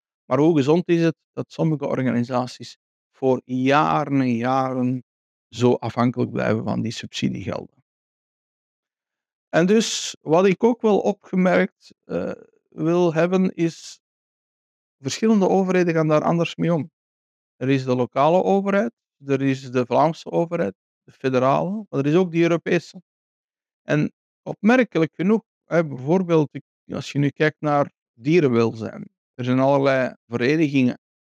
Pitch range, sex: 125-170 Hz, male